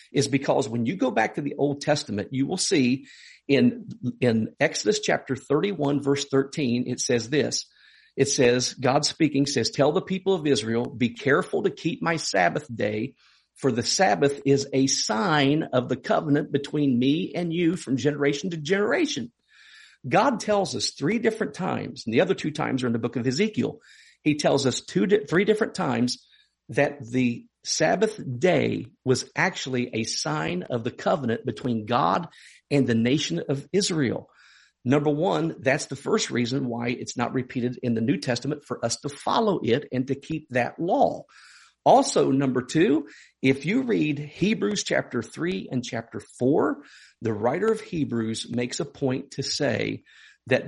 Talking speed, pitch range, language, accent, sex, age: 170 wpm, 125-160 Hz, English, American, male, 50-69